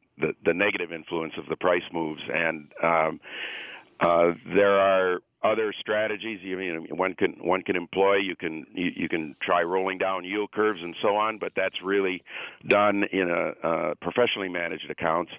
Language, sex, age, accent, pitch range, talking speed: English, male, 50-69, American, 90-110 Hz, 175 wpm